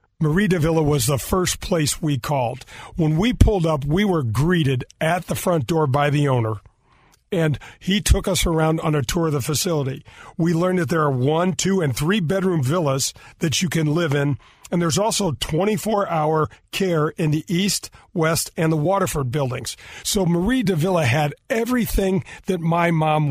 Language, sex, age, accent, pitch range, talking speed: English, male, 40-59, American, 140-180 Hz, 185 wpm